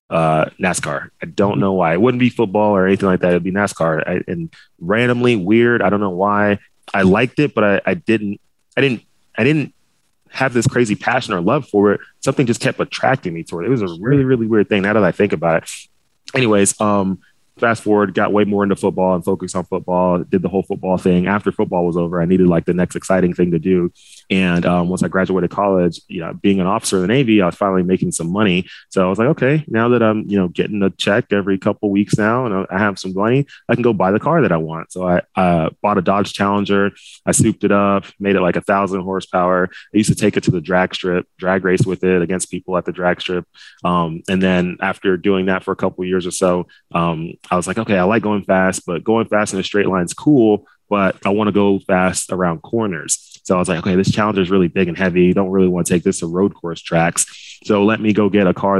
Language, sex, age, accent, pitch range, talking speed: English, male, 20-39, American, 90-105 Hz, 255 wpm